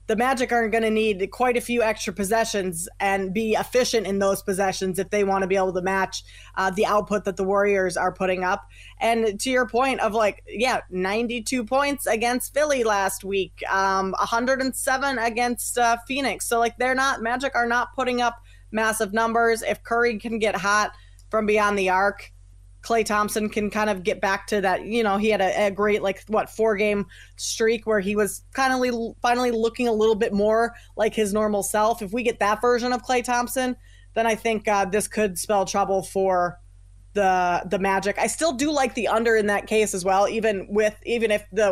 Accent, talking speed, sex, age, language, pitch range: American, 210 wpm, female, 30-49, English, 195-230 Hz